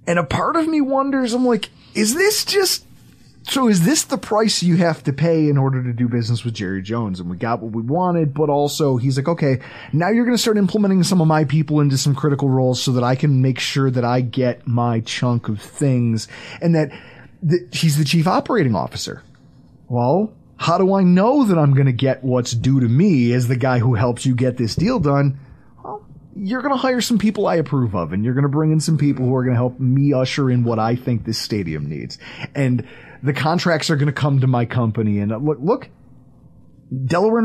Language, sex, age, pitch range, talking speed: English, male, 30-49, 125-180 Hz, 230 wpm